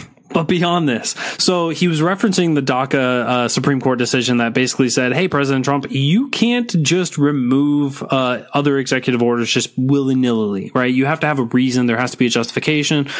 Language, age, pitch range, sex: English, 20-39, 130-155 Hz, male